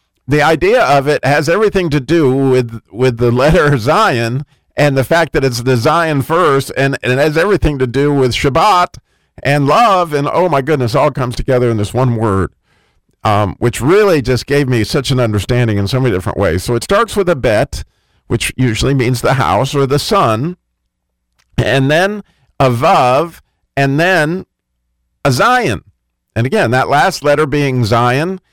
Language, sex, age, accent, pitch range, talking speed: English, male, 50-69, American, 115-150 Hz, 180 wpm